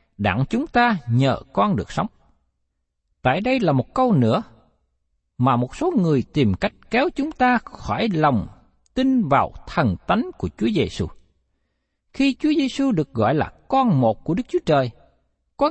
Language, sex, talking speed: Vietnamese, male, 170 wpm